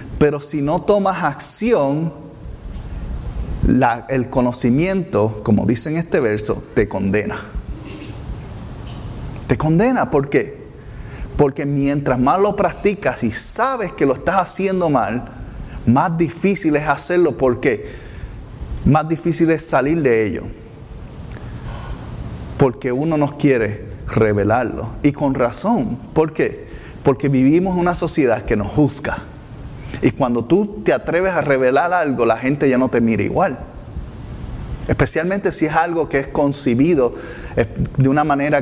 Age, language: 30-49, Spanish